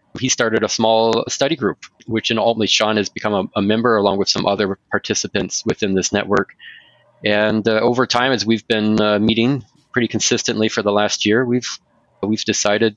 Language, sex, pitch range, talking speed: English, male, 100-115 Hz, 190 wpm